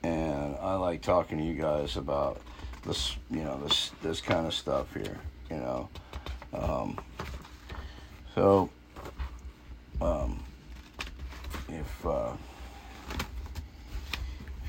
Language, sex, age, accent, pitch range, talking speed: English, male, 50-69, American, 65-85 Hz, 100 wpm